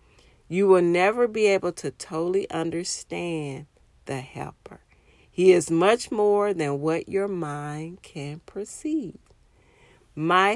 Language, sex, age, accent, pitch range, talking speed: English, female, 40-59, American, 145-195 Hz, 120 wpm